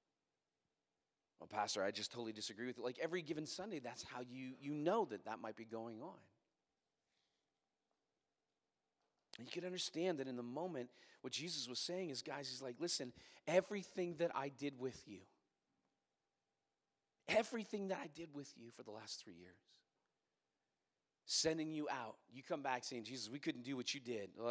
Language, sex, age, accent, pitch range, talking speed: English, male, 30-49, American, 105-140 Hz, 175 wpm